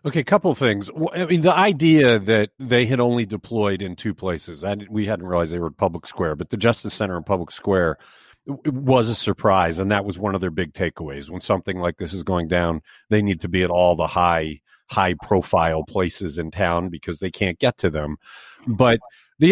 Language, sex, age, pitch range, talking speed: English, male, 50-69, 90-125 Hz, 220 wpm